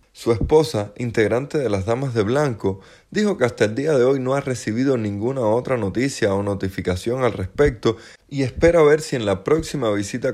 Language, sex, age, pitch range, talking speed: Spanish, male, 30-49, 100-135 Hz, 190 wpm